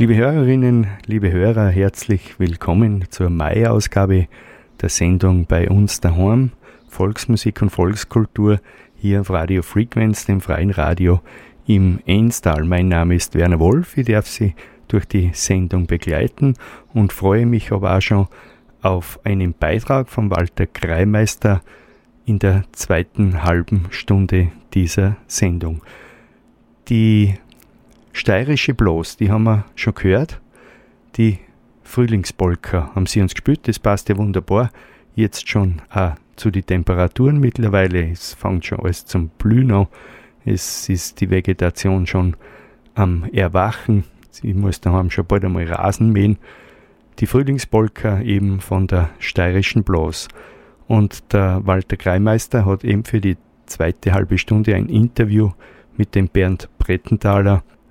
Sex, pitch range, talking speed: male, 90-110 Hz, 130 wpm